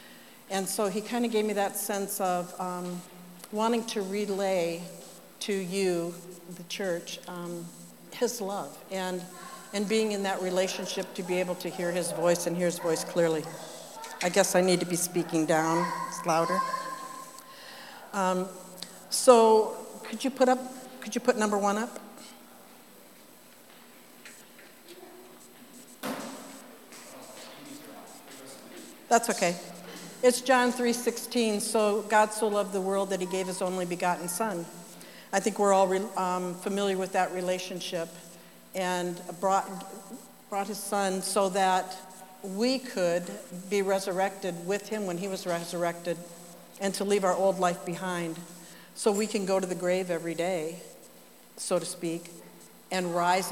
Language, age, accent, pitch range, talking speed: English, 60-79, American, 175-205 Hz, 145 wpm